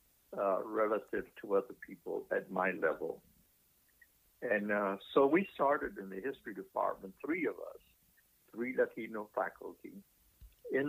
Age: 60-79